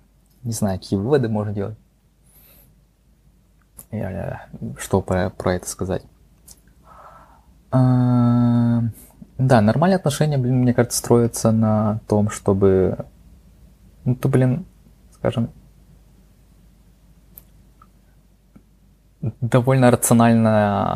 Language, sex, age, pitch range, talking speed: Russian, male, 20-39, 95-120 Hz, 75 wpm